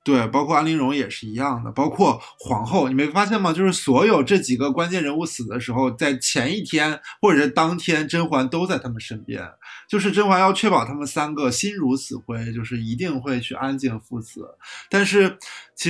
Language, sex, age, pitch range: Chinese, male, 20-39, 130-185 Hz